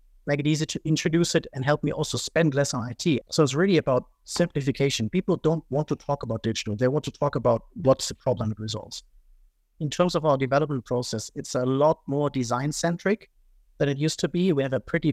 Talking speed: 225 wpm